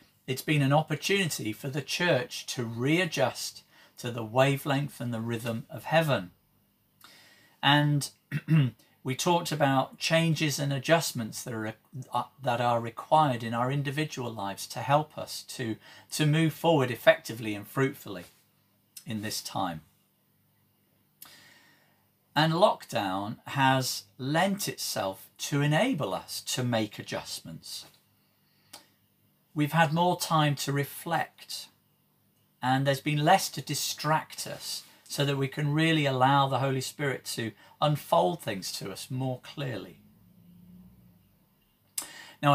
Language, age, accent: English, 50-69, British